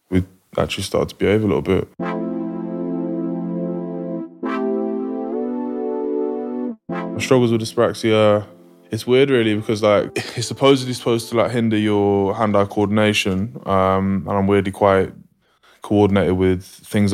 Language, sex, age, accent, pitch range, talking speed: English, male, 20-39, British, 95-105 Hz, 115 wpm